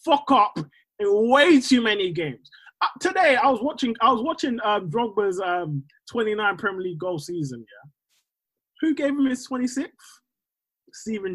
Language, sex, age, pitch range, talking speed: English, male, 20-39, 165-255 Hz, 160 wpm